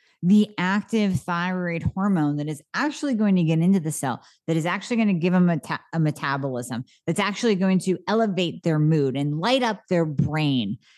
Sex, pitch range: female, 150-200 Hz